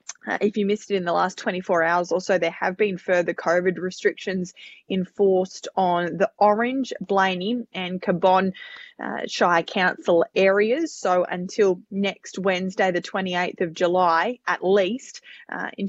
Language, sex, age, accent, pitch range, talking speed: English, female, 20-39, Australian, 175-195 Hz, 155 wpm